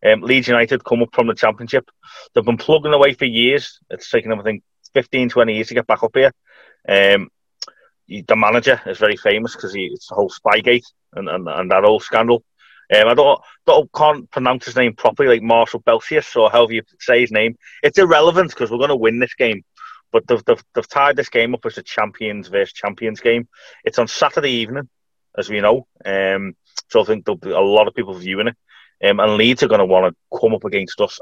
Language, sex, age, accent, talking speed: English, male, 30-49, British, 225 wpm